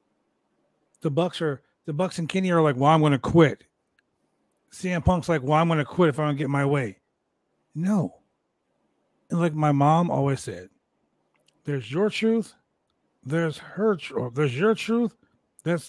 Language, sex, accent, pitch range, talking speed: English, male, American, 140-185 Hz, 180 wpm